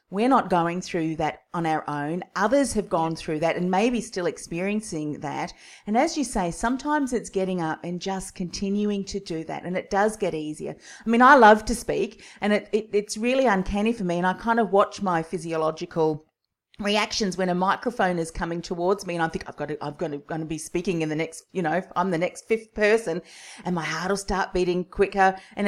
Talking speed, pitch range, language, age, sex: 225 wpm, 165-220 Hz, English, 40-59, female